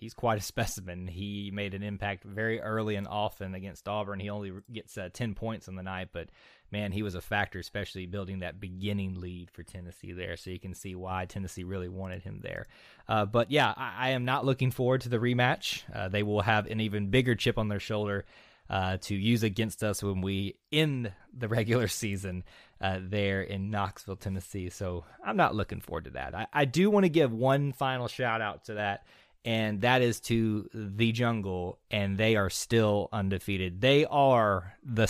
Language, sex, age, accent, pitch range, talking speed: English, male, 20-39, American, 95-115 Hz, 205 wpm